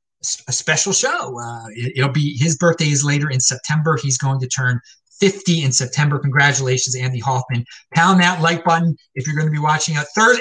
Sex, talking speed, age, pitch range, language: male, 195 wpm, 30-49, 145-225 Hz, English